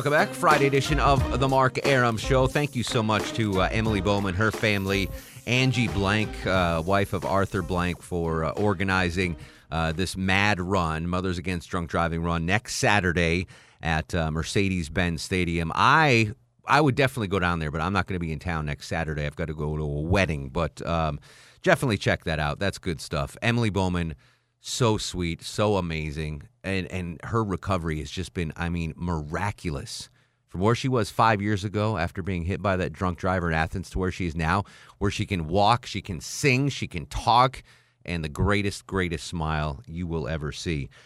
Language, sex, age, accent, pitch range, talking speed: English, male, 30-49, American, 85-115 Hz, 195 wpm